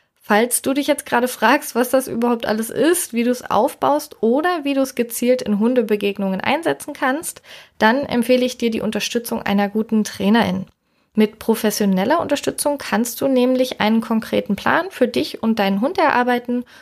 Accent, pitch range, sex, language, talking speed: German, 200-255 Hz, female, German, 170 wpm